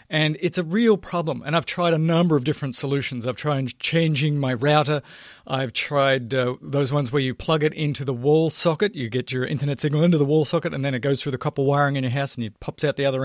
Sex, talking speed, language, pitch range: male, 260 wpm, English, 135-165 Hz